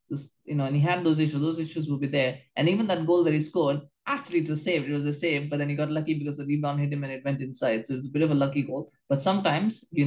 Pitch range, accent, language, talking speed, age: 135-155 Hz, Indian, English, 315 wpm, 20-39